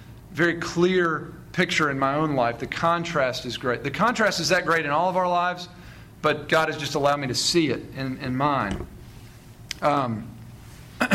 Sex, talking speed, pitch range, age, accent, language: male, 185 wpm, 135-175 Hz, 40-59, American, English